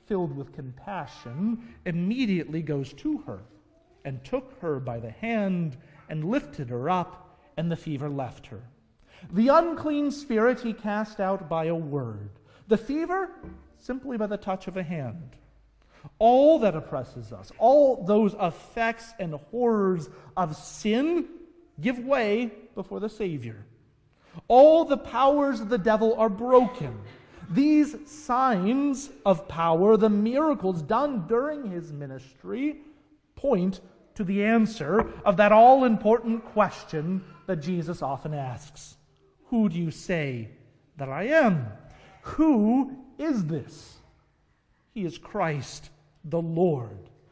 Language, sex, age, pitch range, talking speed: English, male, 40-59, 150-235 Hz, 130 wpm